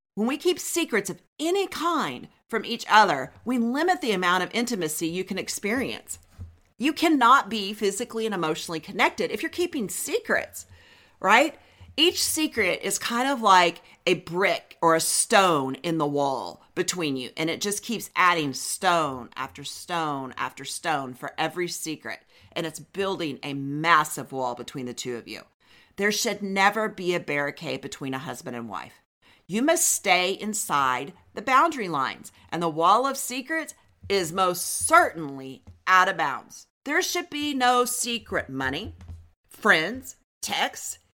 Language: English